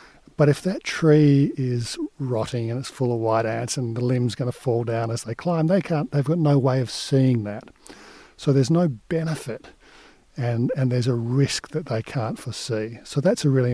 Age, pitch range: 50-69, 120-155 Hz